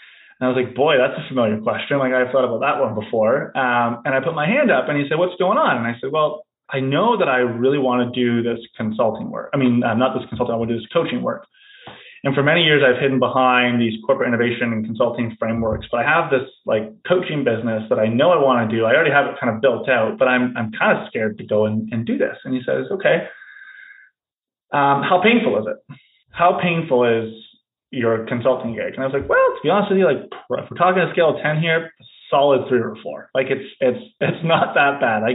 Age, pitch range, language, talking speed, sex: 20-39, 115-165 Hz, English, 255 wpm, male